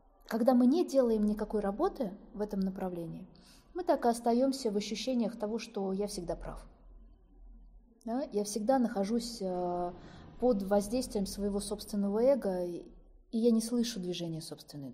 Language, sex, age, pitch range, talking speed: Russian, female, 20-39, 185-240 Hz, 140 wpm